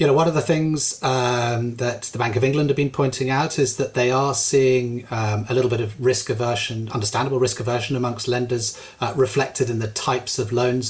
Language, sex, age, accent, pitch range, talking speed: English, male, 30-49, British, 110-135 Hz, 220 wpm